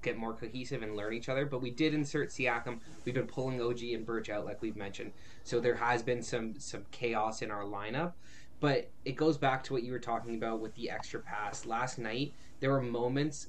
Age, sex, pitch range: 20-39, male, 115-135 Hz